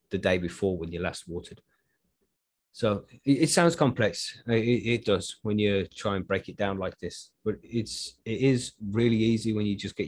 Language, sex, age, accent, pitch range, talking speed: English, male, 20-39, British, 95-115 Hz, 200 wpm